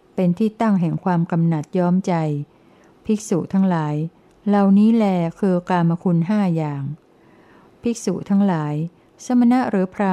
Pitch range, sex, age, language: 165-195 Hz, female, 60-79, Thai